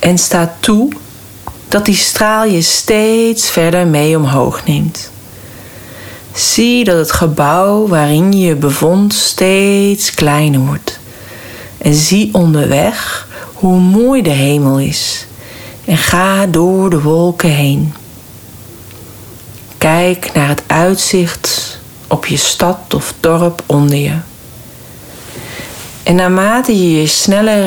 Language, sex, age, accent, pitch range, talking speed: Dutch, female, 40-59, Dutch, 130-185 Hz, 115 wpm